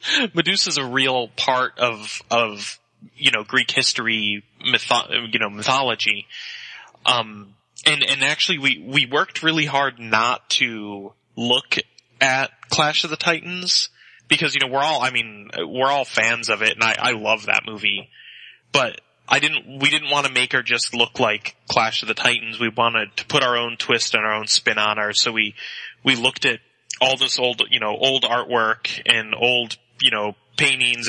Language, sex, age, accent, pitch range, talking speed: English, male, 20-39, American, 110-135 Hz, 185 wpm